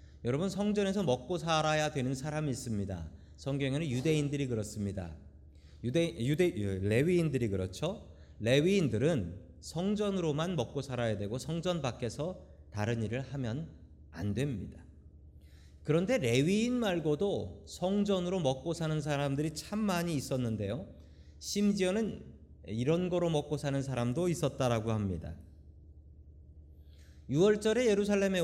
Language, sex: Korean, male